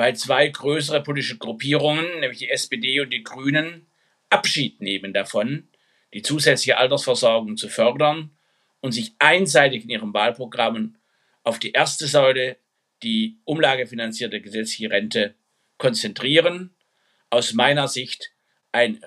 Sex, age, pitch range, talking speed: male, 60-79, 125-190 Hz, 120 wpm